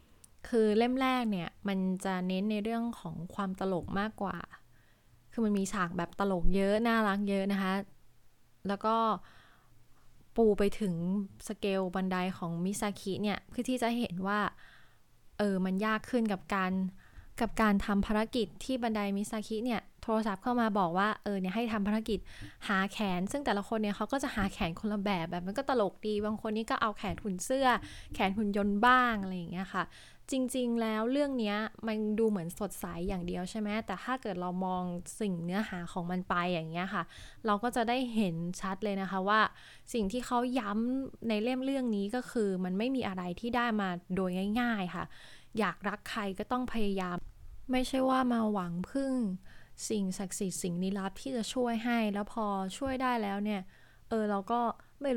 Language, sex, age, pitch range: Thai, female, 20-39, 185-225 Hz